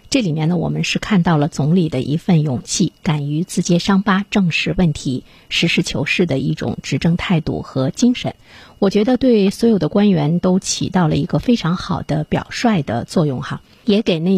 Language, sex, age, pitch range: Chinese, female, 50-69, 155-205 Hz